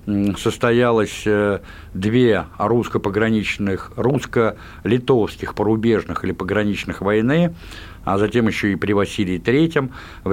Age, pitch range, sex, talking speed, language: 60-79, 100-125 Hz, male, 95 wpm, Russian